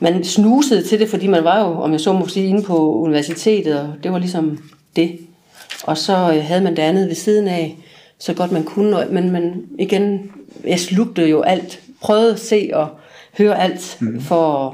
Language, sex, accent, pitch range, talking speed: Danish, female, native, 160-195 Hz, 200 wpm